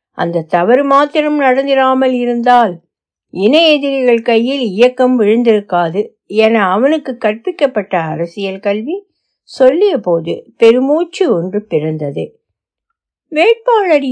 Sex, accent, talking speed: female, native, 85 wpm